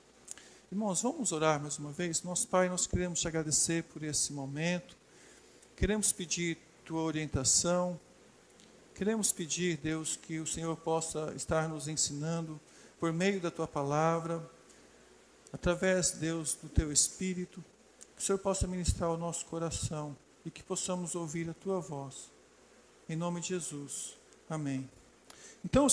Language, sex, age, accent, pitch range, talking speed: Portuguese, male, 50-69, Brazilian, 165-200 Hz, 140 wpm